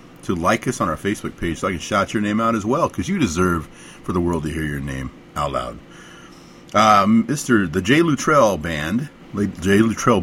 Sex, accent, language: male, American, English